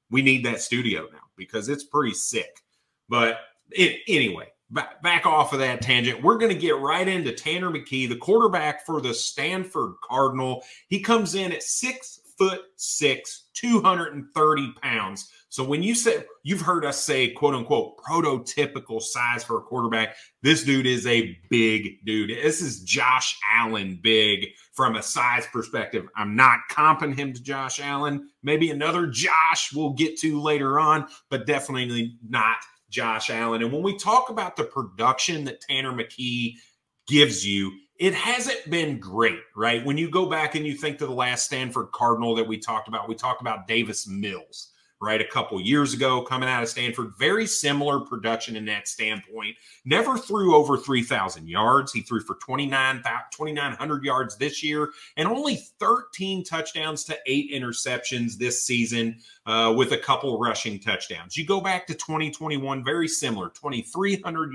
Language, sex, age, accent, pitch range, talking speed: English, male, 30-49, American, 120-155 Hz, 170 wpm